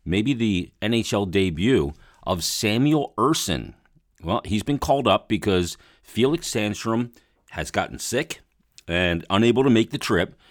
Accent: American